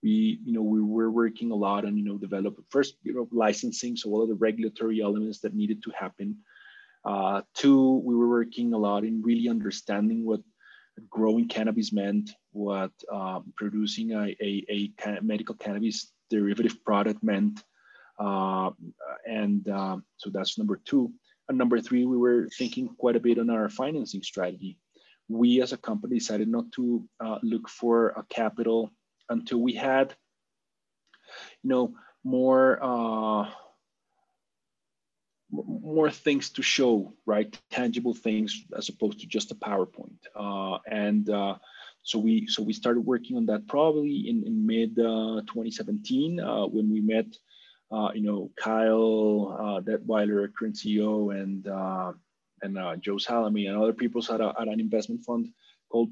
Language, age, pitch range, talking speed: English, 30-49, 105-125 Hz, 155 wpm